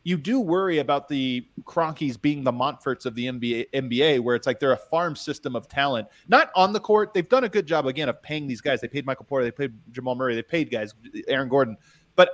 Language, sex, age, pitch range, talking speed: English, male, 30-49, 120-150 Hz, 245 wpm